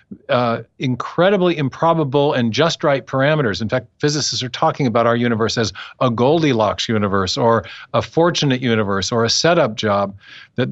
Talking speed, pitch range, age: 155 wpm, 115-145 Hz, 50-69